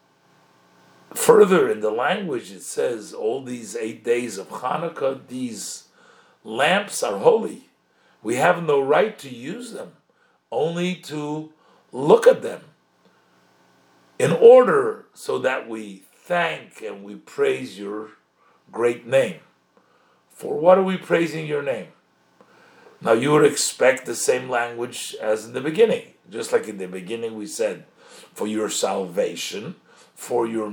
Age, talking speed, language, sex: 50-69, 135 wpm, English, male